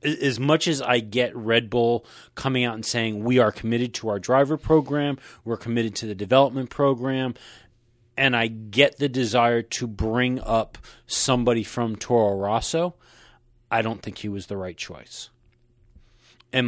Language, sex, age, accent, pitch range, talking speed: English, male, 30-49, American, 115-130 Hz, 160 wpm